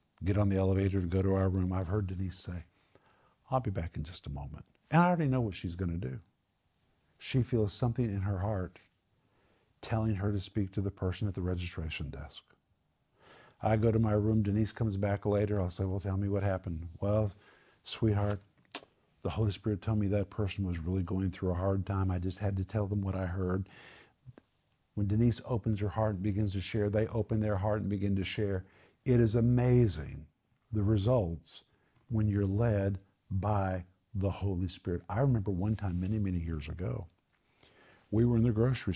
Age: 50-69